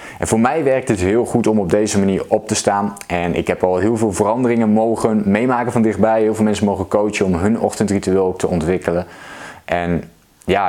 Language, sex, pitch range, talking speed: Dutch, male, 95-120 Hz, 210 wpm